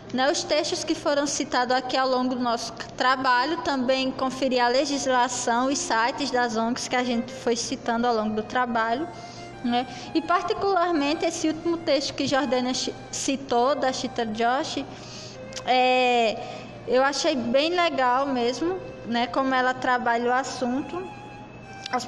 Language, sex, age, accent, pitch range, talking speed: Portuguese, female, 20-39, Brazilian, 250-300 Hz, 145 wpm